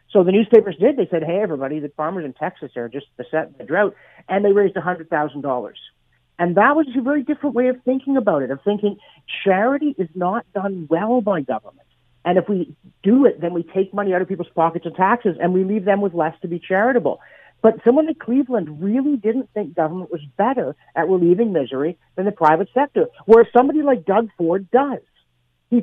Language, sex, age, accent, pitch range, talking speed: English, male, 50-69, American, 165-225 Hz, 210 wpm